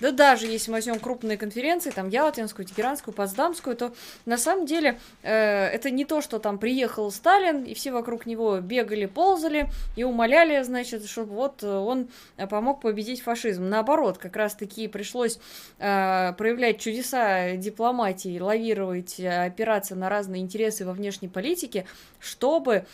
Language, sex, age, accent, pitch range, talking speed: Russian, female, 20-39, native, 195-245 Hz, 145 wpm